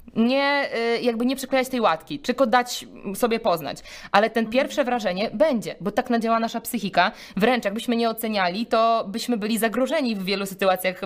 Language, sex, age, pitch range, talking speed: Polish, female, 20-39, 190-245 Hz, 170 wpm